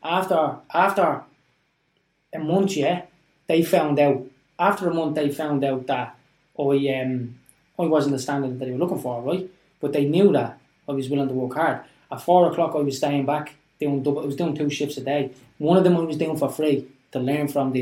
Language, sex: English, male